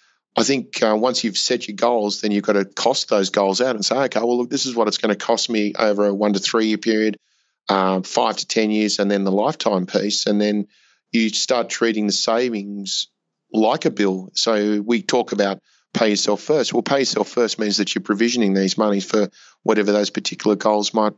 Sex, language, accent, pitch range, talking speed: male, English, Australian, 100-110 Hz, 225 wpm